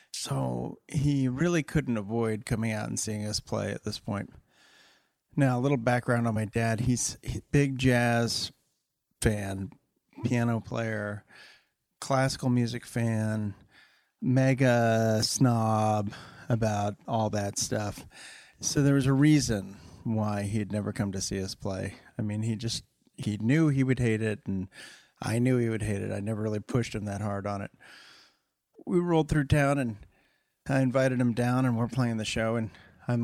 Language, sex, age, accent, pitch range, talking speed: English, male, 40-59, American, 110-130 Hz, 165 wpm